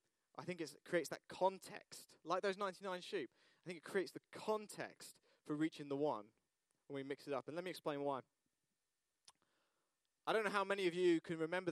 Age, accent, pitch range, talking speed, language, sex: 20-39, British, 150-190 Hz, 200 wpm, English, male